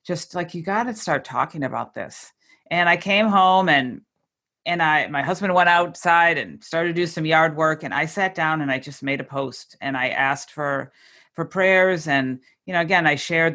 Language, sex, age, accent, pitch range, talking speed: English, female, 50-69, American, 150-195 Hz, 215 wpm